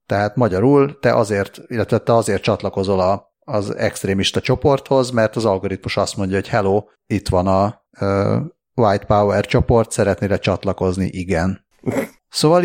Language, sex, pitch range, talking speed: Hungarian, male, 100-130 Hz, 135 wpm